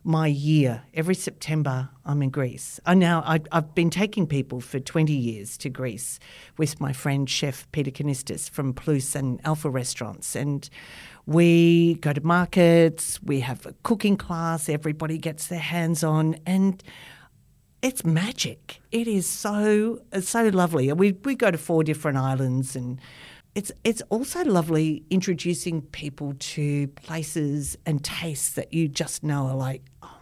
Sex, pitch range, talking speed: female, 145-175 Hz, 155 wpm